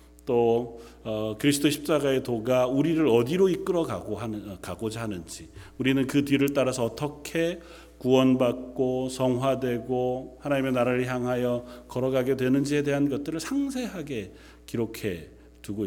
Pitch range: 100-165 Hz